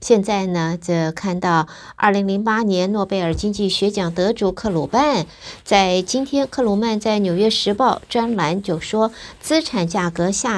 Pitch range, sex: 175-225 Hz, female